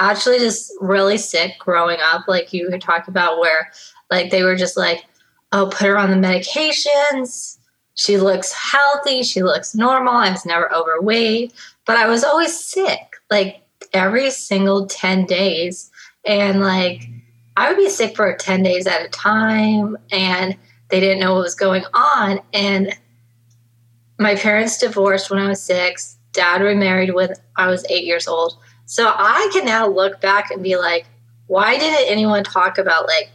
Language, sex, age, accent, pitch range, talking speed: English, female, 20-39, American, 180-210 Hz, 170 wpm